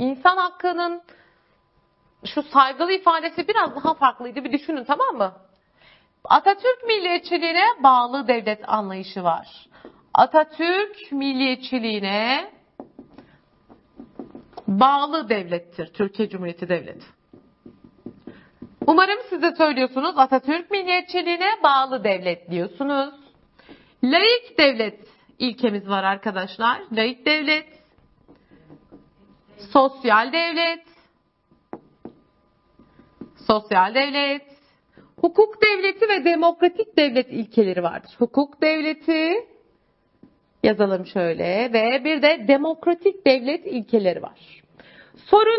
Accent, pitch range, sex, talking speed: native, 230-350 Hz, female, 85 wpm